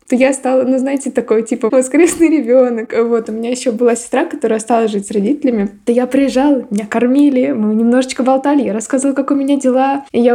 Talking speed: 210 wpm